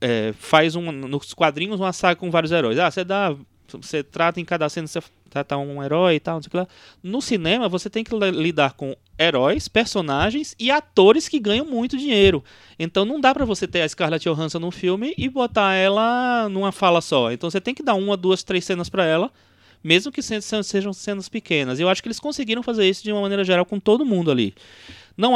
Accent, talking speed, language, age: Brazilian, 220 wpm, Portuguese, 20-39